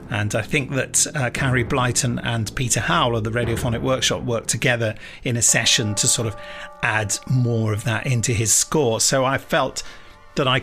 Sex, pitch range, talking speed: male, 110-135 Hz, 190 wpm